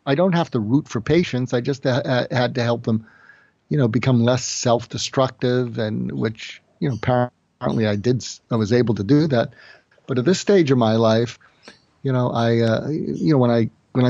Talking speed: 200 wpm